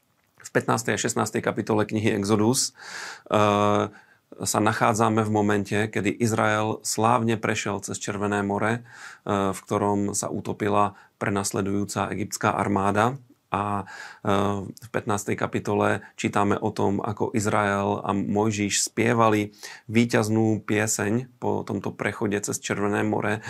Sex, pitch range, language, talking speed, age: male, 100-110 Hz, Slovak, 120 wpm, 40-59